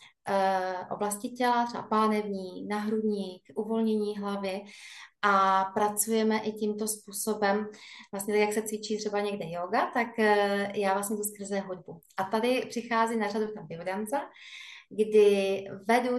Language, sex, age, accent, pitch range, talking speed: Czech, female, 20-39, native, 205-245 Hz, 125 wpm